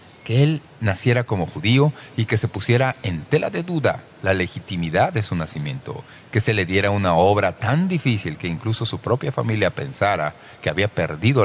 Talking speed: 185 wpm